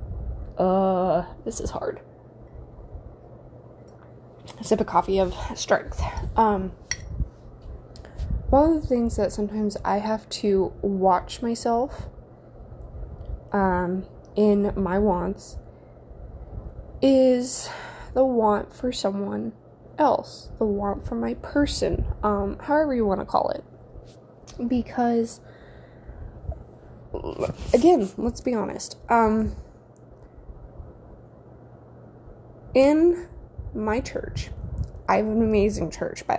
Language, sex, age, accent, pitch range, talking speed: English, female, 10-29, American, 195-255 Hz, 95 wpm